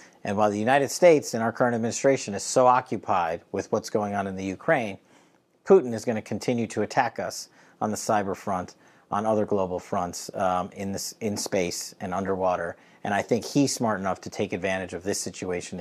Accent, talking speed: American, 200 wpm